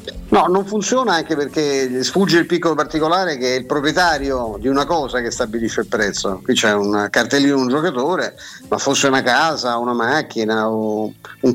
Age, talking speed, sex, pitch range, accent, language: 50-69, 180 wpm, male, 125-160 Hz, native, Italian